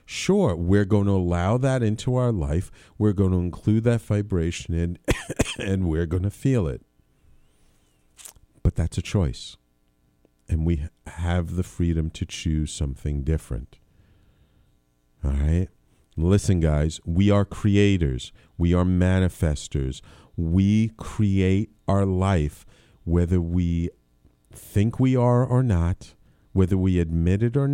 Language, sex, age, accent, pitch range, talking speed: English, male, 50-69, American, 75-100 Hz, 130 wpm